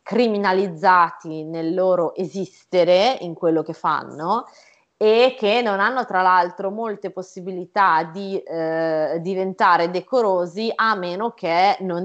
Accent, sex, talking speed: native, female, 120 wpm